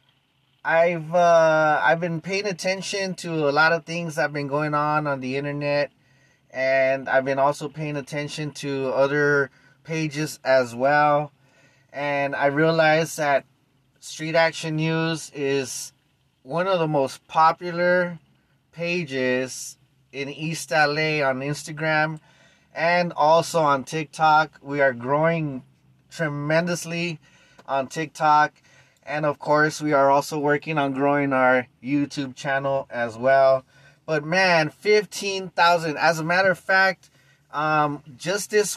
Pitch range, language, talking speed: 140-165 Hz, English, 130 wpm